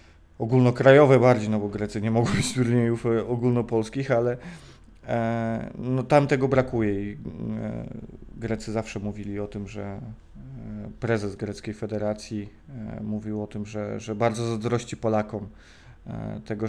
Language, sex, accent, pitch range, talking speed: Polish, male, native, 105-125 Hz, 140 wpm